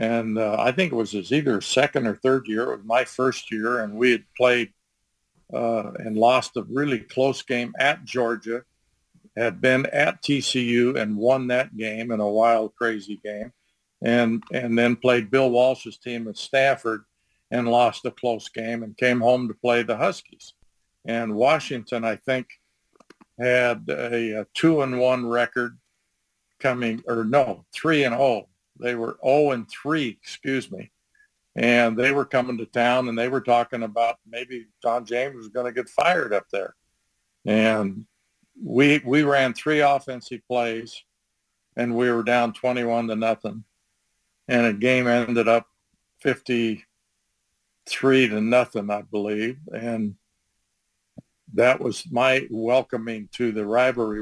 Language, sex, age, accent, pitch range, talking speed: English, male, 50-69, American, 110-125 Hz, 155 wpm